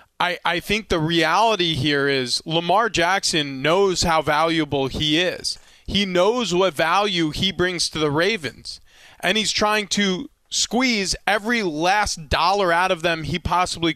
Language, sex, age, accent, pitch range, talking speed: English, male, 30-49, American, 155-220 Hz, 155 wpm